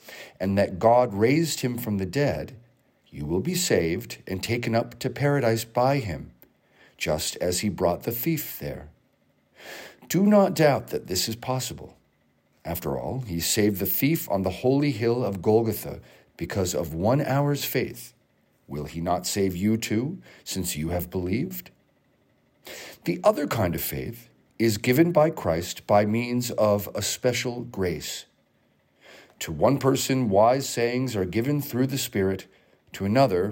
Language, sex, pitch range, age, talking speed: English, male, 95-135 Hz, 50-69, 155 wpm